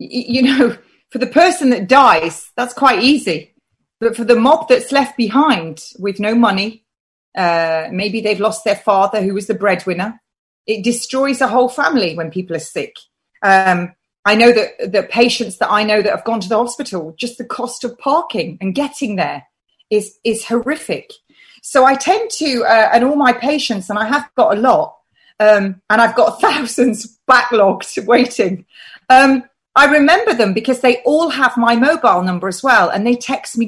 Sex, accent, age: female, British, 30-49